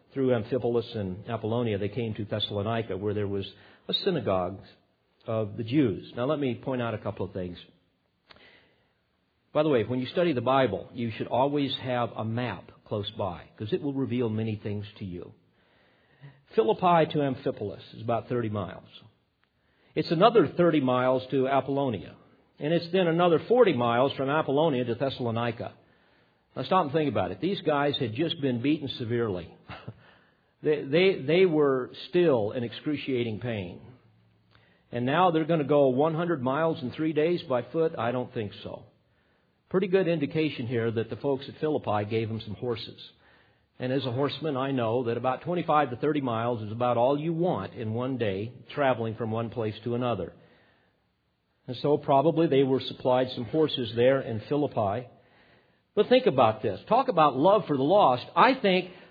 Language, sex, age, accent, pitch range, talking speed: English, male, 50-69, American, 115-150 Hz, 175 wpm